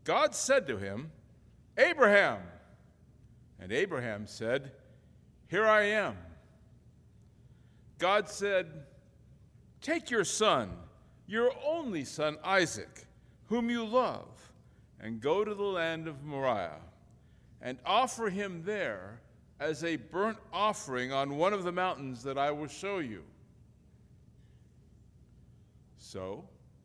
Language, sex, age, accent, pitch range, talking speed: English, male, 60-79, American, 135-220 Hz, 110 wpm